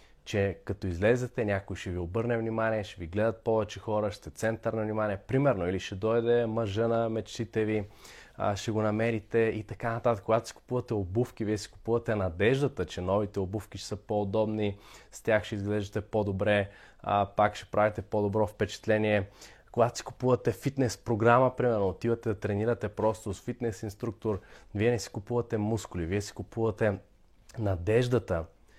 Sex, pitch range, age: male, 100-115 Hz, 20-39